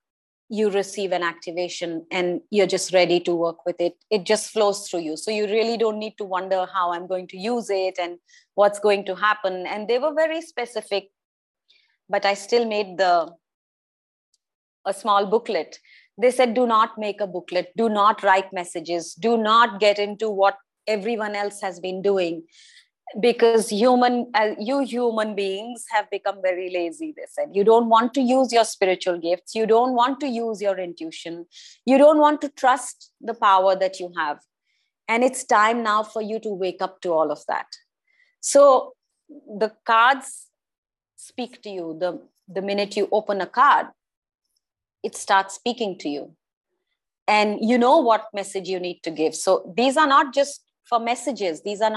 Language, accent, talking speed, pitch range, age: English, Indian, 180 wpm, 185-235 Hz, 30-49